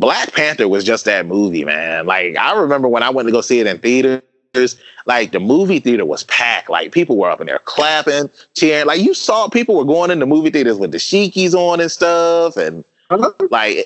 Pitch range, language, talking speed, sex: 95-135 Hz, English, 220 wpm, male